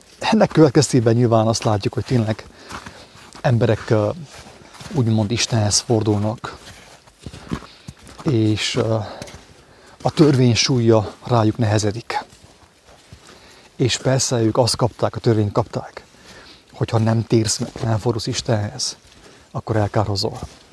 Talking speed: 100 wpm